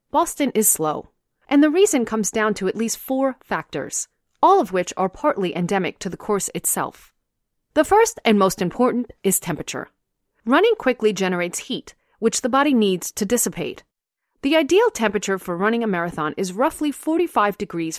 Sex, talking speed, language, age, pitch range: female, 170 wpm, English, 30-49, 190-300 Hz